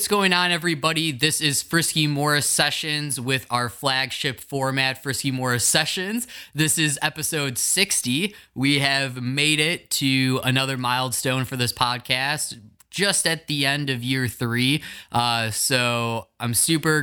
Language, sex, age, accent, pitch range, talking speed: English, male, 20-39, American, 120-150 Hz, 145 wpm